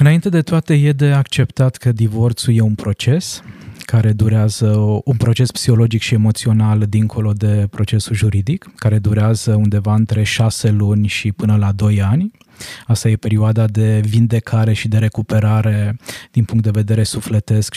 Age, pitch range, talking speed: 20-39, 110-130 Hz, 155 wpm